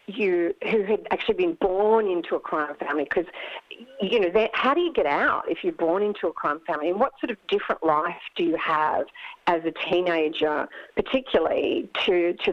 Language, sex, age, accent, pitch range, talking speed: English, female, 50-69, Australian, 170-245 Hz, 190 wpm